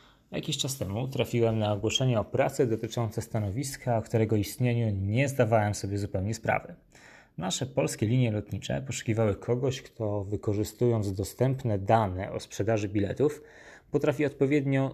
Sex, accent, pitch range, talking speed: male, native, 105-130 Hz, 135 wpm